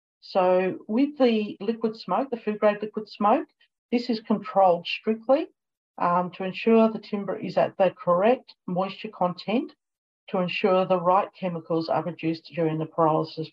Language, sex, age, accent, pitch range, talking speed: English, female, 50-69, Australian, 165-215 Hz, 155 wpm